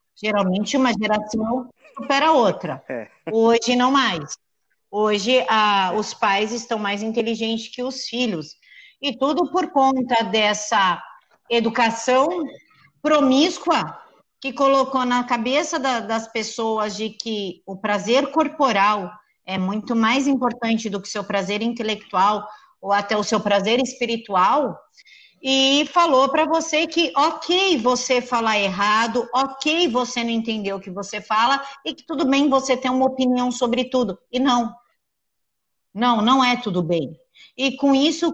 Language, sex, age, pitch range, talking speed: Portuguese, female, 50-69, 220-275 Hz, 140 wpm